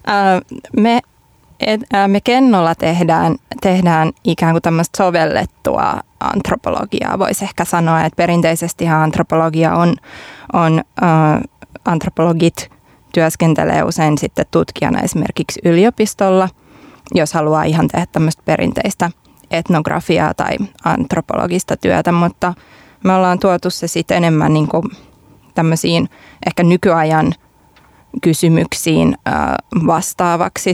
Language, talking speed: Finnish, 95 wpm